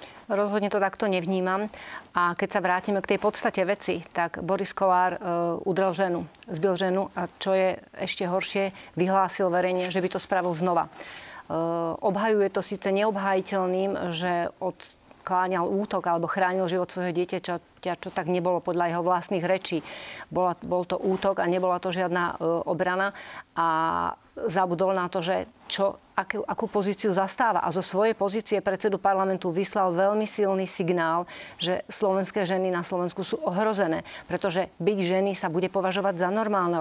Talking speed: 160 wpm